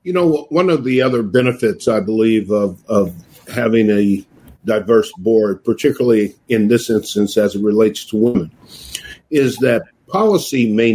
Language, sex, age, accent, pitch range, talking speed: English, male, 50-69, American, 110-135 Hz, 155 wpm